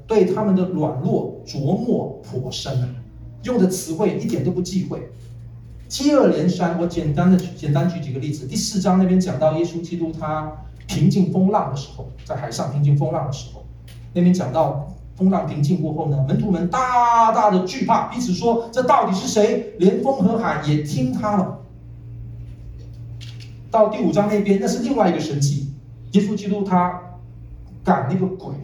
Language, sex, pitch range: Chinese, male, 130-195 Hz